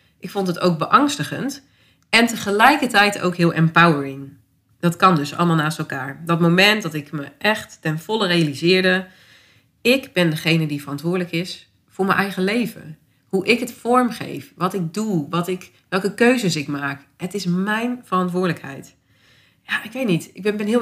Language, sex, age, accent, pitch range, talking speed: Dutch, female, 30-49, Dutch, 160-215 Hz, 165 wpm